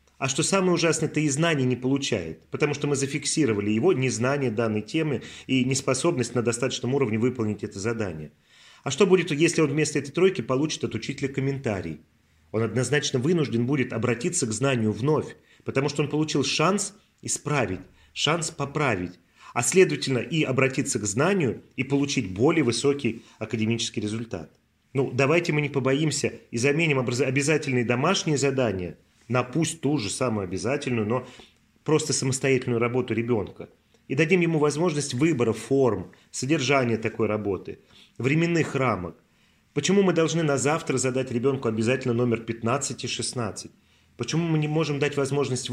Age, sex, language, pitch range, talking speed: 30-49, male, Russian, 115-150 Hz, 150 wpm